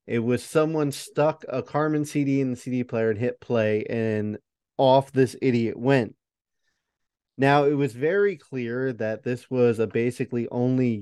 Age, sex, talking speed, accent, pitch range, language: 30-49, male, 165 wpm, American, 115-135 Hz, English